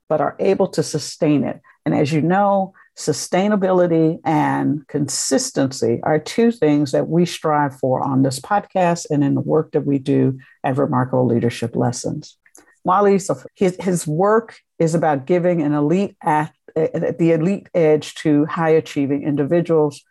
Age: 60-79